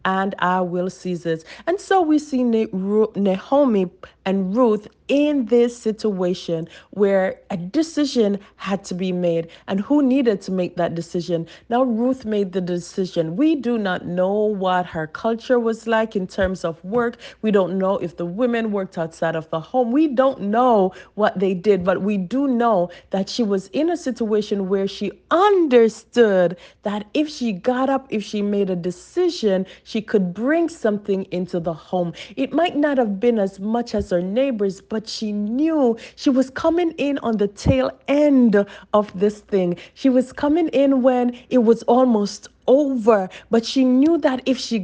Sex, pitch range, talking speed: female, 190-255 Hz, 180 wpm